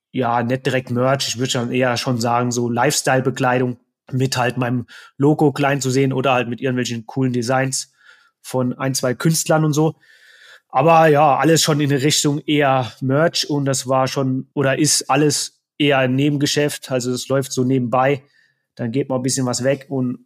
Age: 30-49